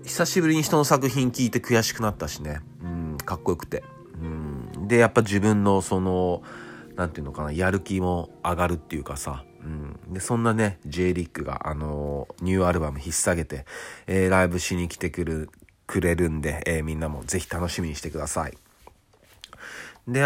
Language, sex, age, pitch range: Japanese, male, 40-59, 80-100 Hz